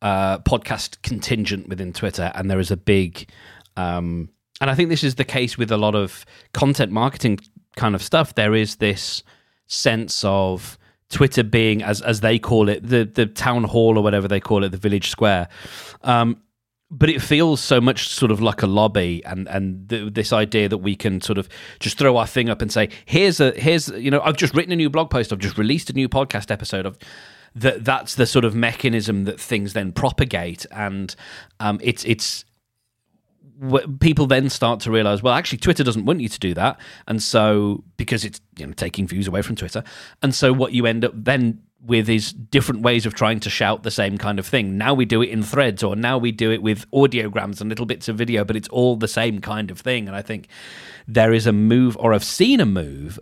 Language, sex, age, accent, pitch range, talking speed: English, male, 30-49, British, 100-125 Hz, 225 wpm